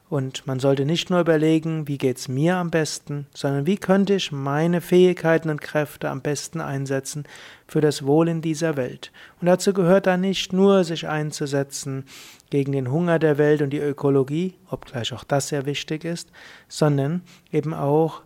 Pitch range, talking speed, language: 140-170 Hz, 175 wpm, German